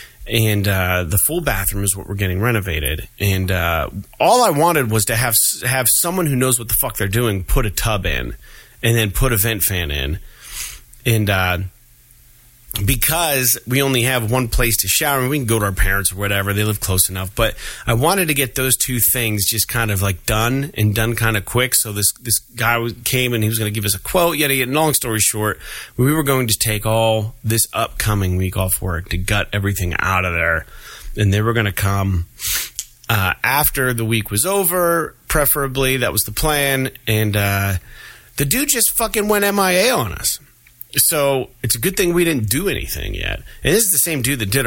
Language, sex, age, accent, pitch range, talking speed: English, male, 30-49, American, 100-130 Hz, 215 wpm